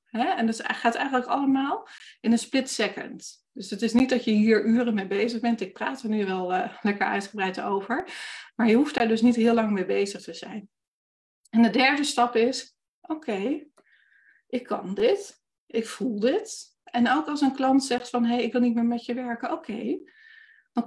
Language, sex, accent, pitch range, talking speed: Dutch, female, Dutch, 205-265 Hz, 215 wpm